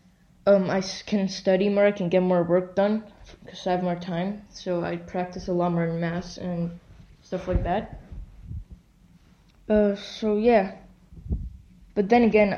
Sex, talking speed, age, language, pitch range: female, 160 wpm, 20-39, English, 180-205 Hz